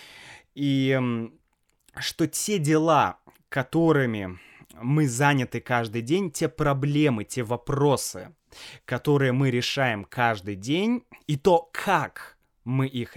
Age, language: 20-39, Russian